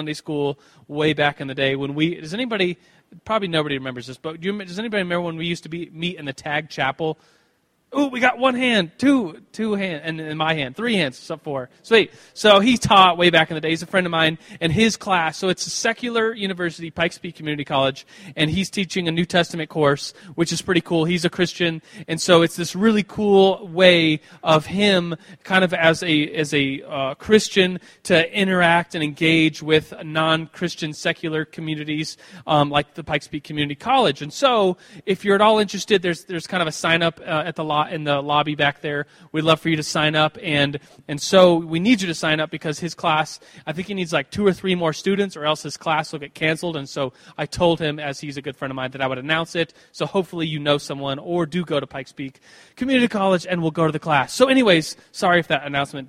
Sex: male